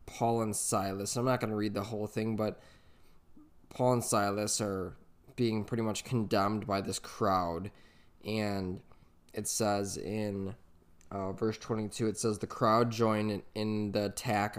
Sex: male